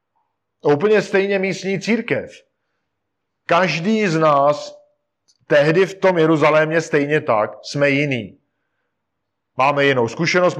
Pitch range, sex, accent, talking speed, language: 130-175 Hz, male, native, 100 wpm, Czech